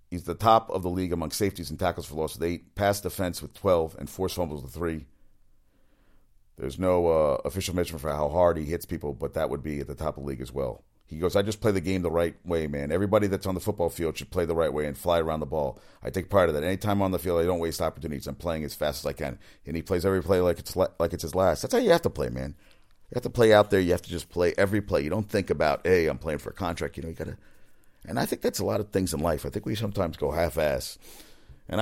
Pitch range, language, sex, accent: 85-105 Hz, English, male, American